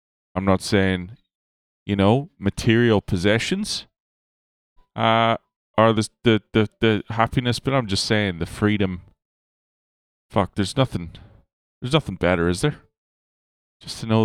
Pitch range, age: 85-105 Hz, 20-39